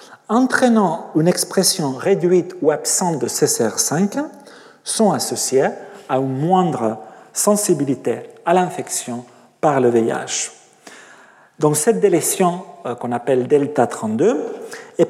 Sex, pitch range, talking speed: male, 145-225 Hz, 105 wpm